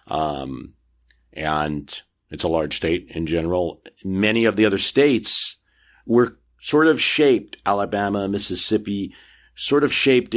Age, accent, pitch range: 50-69, American, 85-115 Hz